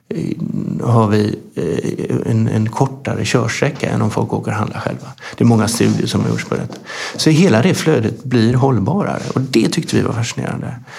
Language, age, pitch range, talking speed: Swedish, 50-69, 110-125 Hz, 170 wpm